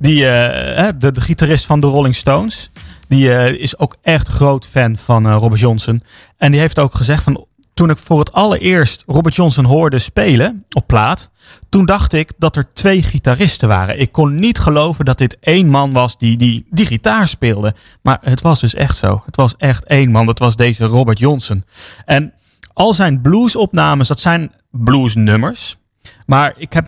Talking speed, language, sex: 185 wpm, Dutch, male